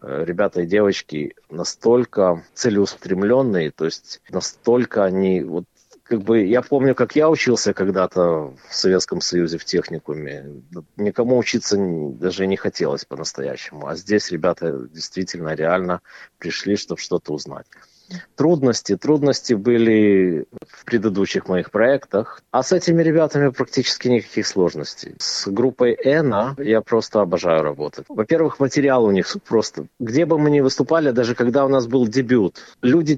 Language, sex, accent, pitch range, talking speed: Russian, male, native, 100-135 Hz, 135 wpm